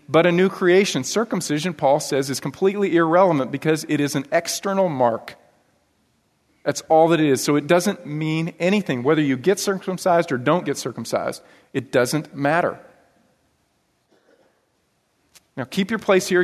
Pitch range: 135-185 Hz